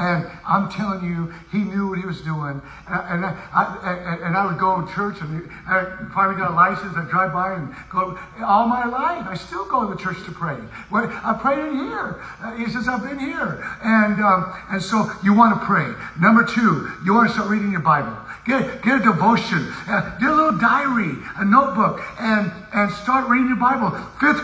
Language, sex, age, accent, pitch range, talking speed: English, male, 50-69, American, 185-245 Hz, 210 wpm